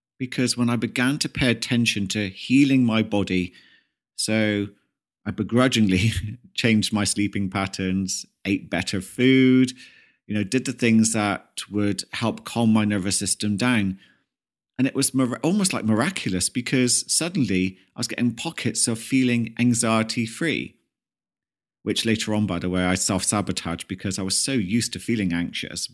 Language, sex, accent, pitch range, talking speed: English, male, British, 95-120 Hz, 155 wpm